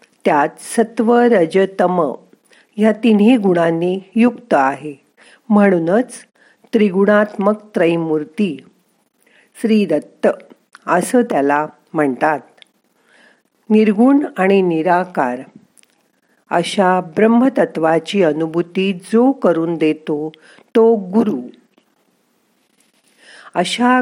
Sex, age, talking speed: female, 50-69, 65 wpm